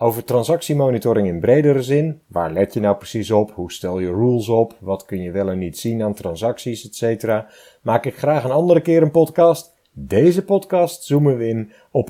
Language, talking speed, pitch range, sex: Dutch, 200 wpm, 100-145 Hz, male